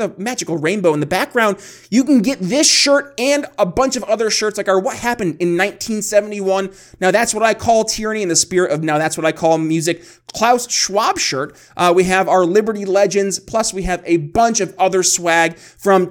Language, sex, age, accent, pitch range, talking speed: English, male, 30-49, American, 160-200 Hz, 210 wpm